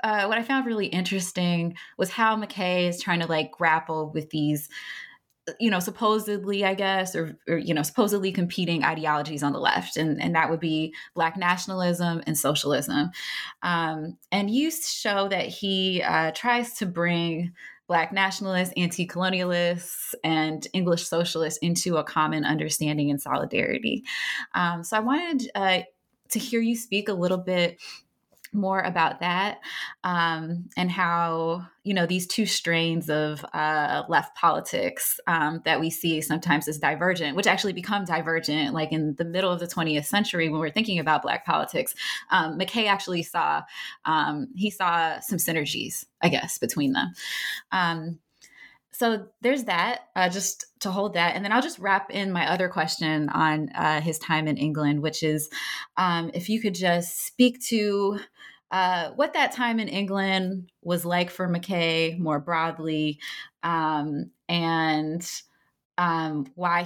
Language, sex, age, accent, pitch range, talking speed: English, female, 20-39, American, 155-195 Hz, 160 wpm